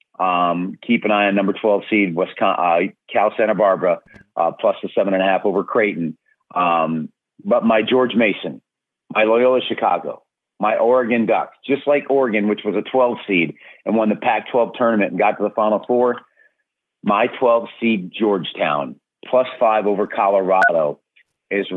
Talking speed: 165 wpm